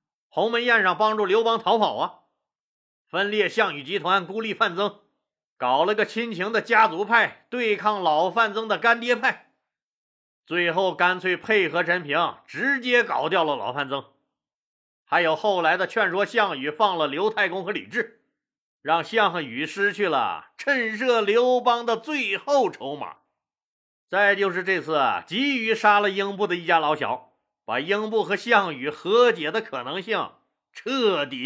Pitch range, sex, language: 185-235 Hz, male, Chinese